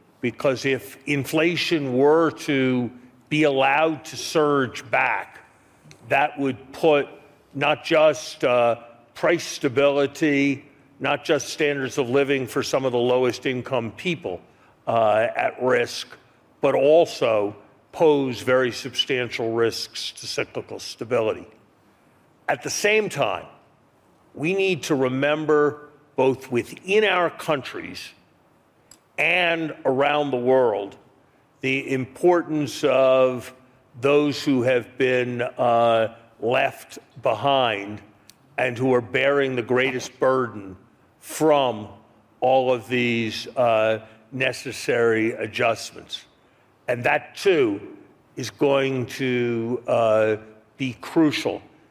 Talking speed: 105 wpm